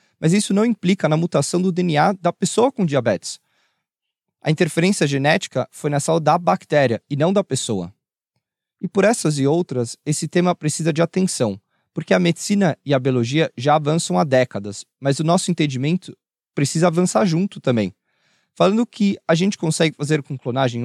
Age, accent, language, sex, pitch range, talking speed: 20-39, Brazilian, Portuguese, male, 140-190 Hz, 175 wpm